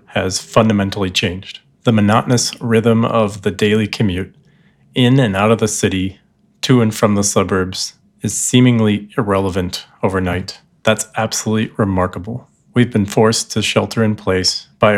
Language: English